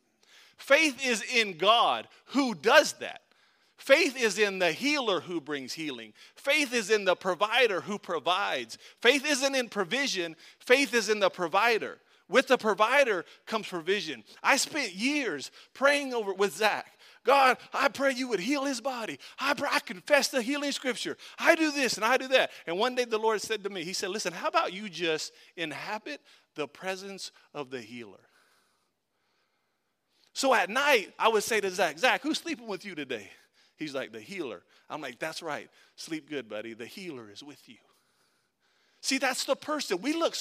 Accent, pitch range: American, 195-275 Hz